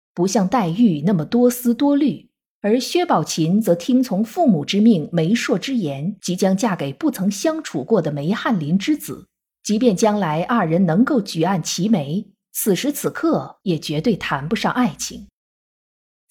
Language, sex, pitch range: Chinese, female, 180-250 Hz